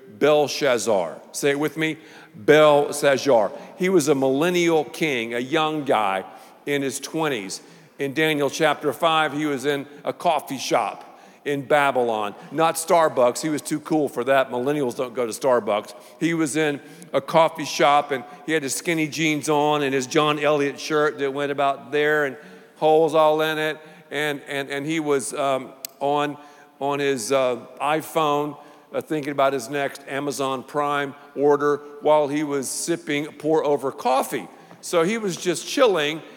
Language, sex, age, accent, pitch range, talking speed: English, male, 50-69, American, 145-175 Hz, 160 wpm